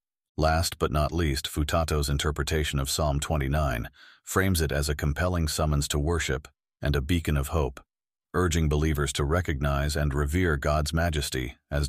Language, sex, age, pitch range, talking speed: English, male, 50-69, 75-85 Hz, 155 wpm